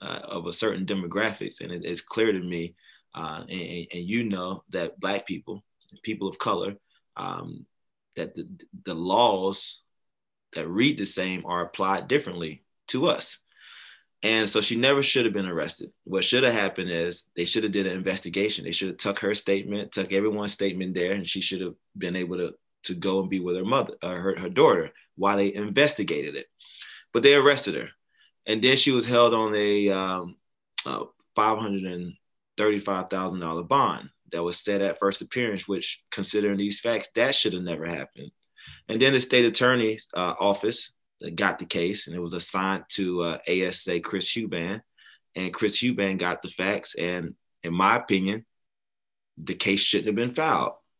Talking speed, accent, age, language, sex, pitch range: 175 wpm, American, 20-39, English, male, 90-105 Hz